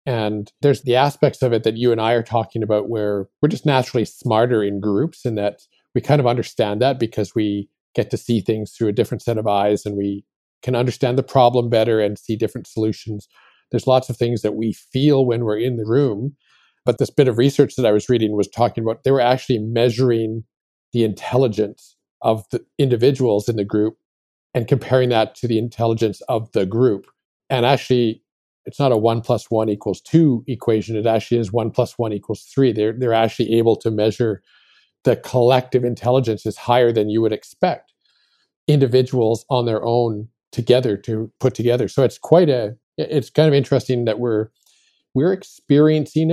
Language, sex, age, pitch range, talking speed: English, male, 50-69, 110-130 Hz, 195 wpm